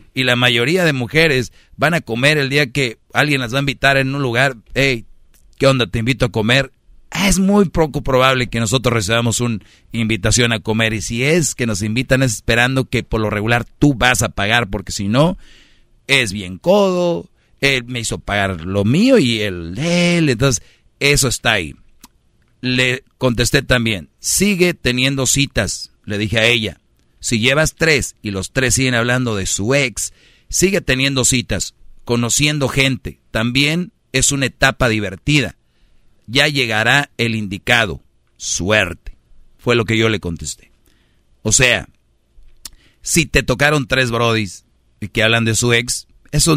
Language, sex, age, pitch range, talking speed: Spanish, male, 40-59, 110-140 Hz, 165 wpm